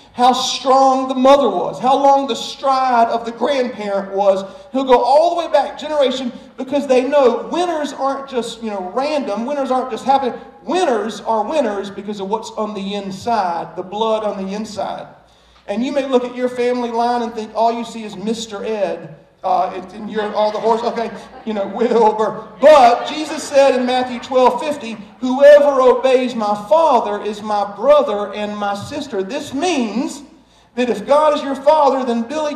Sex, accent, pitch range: male, American, 225-285 Hz